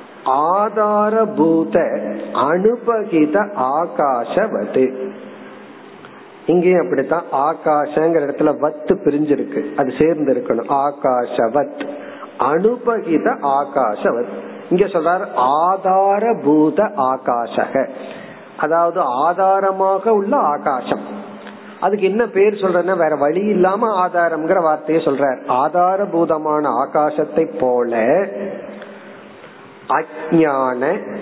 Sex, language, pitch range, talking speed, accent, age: male, Tamil, 150-200 Hz, 70 wpm, native, 50-69